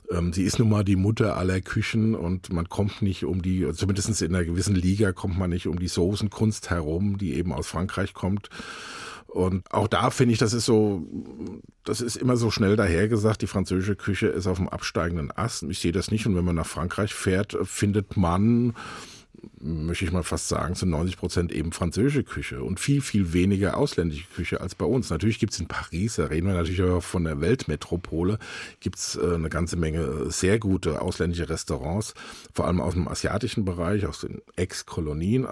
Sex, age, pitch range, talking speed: male, 50-69, 90-110 Hz, 195 wpm